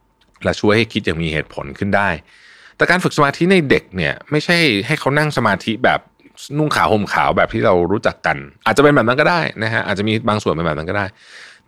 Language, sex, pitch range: Thai, male, 90-130 Hz